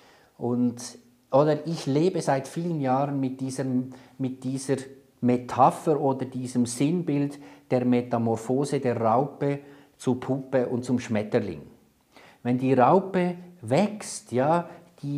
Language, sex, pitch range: German, male, 125-150 Hz